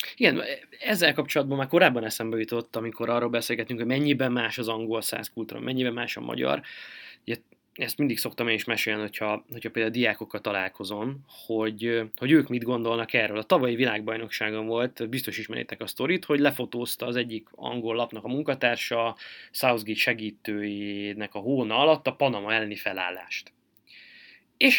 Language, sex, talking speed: Hungarian, male, 155 wpm